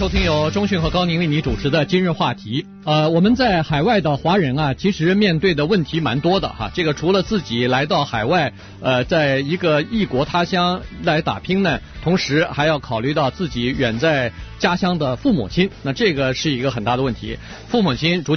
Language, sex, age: Chinese, male, 50-69